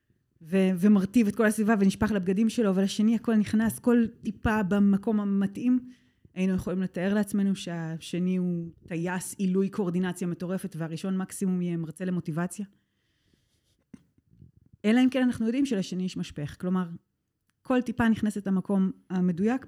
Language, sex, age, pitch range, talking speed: Hebrew, female, 20-39, 170-210 Hz, 130 wpm